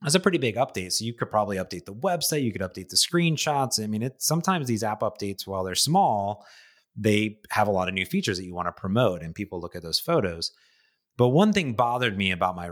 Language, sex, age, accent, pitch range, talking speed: English, male, 30-49, American, 95-125 Hz, 240 wpm